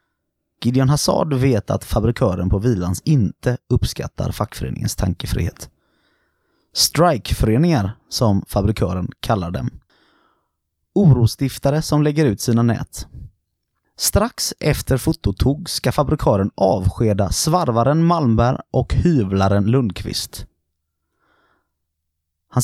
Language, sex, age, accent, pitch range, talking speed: Swedish, male, 30-49, native, 95-135 Hz, 90 wpm